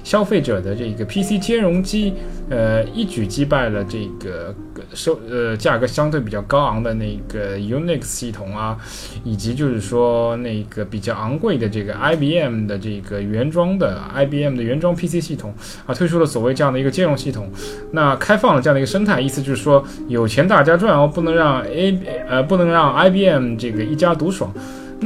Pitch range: 110-160 Hz